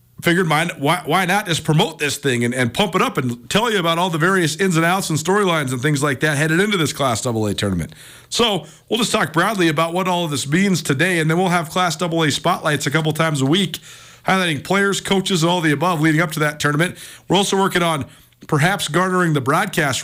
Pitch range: 140-185 Hz